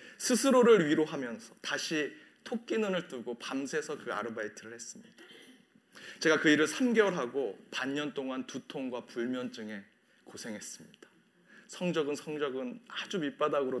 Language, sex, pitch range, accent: Korean, male, 155-220 Hz, native